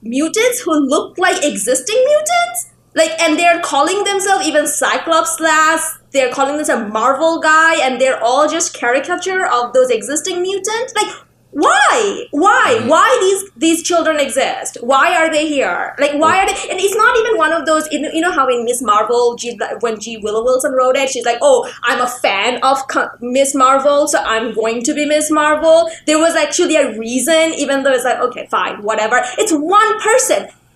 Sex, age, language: female, 20-39, English